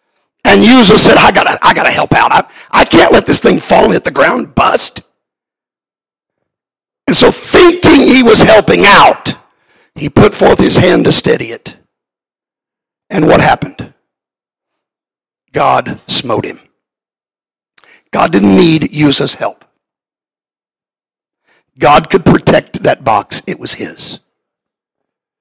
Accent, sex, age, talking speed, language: American, male, 50-69, 130 wpm, English